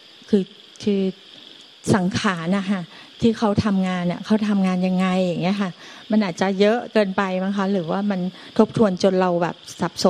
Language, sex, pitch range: Thai, female, 185-220 Hz